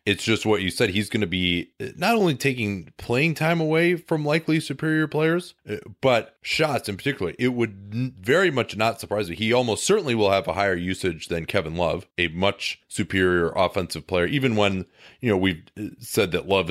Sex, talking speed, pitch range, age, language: male, 195 wpm, 95-125 Hz, 30-49, English